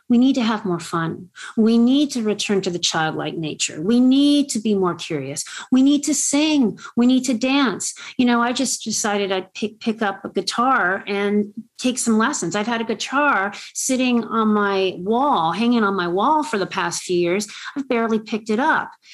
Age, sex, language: 40-59, female, English